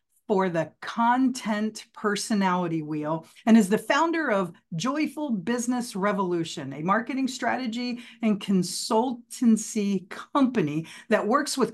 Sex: female